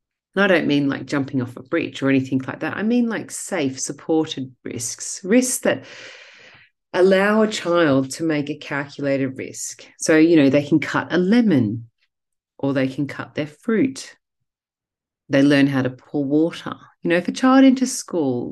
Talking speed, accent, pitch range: 180 wpm, Australian, 140-200 Hz